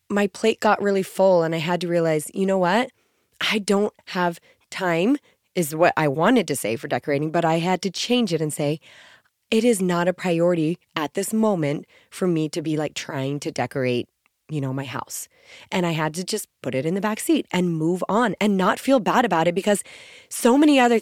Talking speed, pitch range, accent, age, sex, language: 220 wpm, 170-225 Hz, American, 20-39, female, English